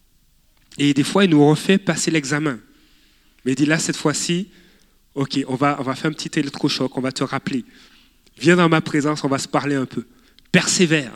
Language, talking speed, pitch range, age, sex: French, 205 wpm, 135-170 Hz, 30-49, male